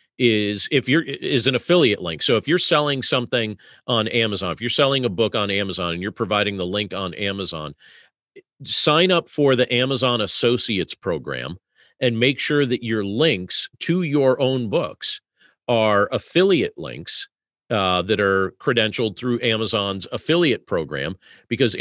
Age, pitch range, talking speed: 40-59, 105-140 Hz, 155 wpm